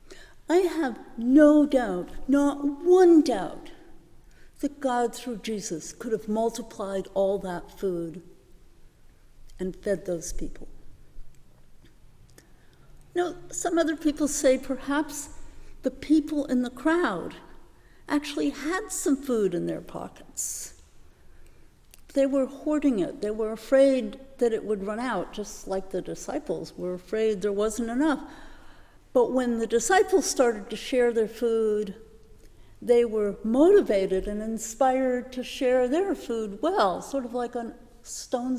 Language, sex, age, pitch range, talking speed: English, female, 60-79, 205-285 Hz, 130 wpm